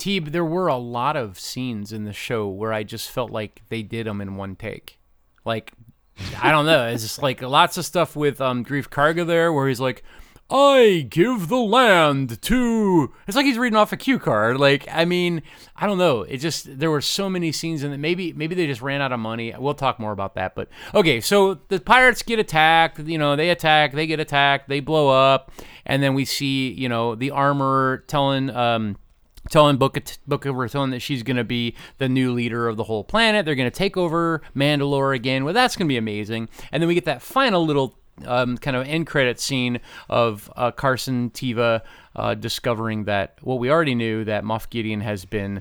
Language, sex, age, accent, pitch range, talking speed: English, male, 30-49, American, 115-155 Hz, 220 wpm